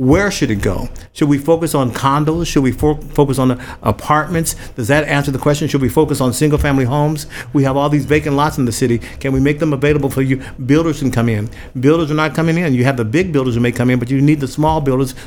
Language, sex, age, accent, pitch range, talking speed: English, male, 50-69, American, 125-150 Hz, 265 wpm